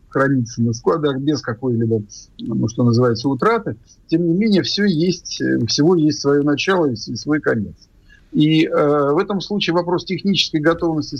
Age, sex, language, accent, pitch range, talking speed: 50-69, male, Russian, native, 120-155 Hz, 155 wpm